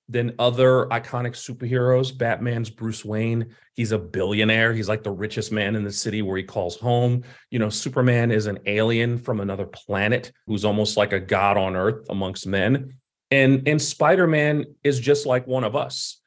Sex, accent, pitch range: male, American, 100-130 Hz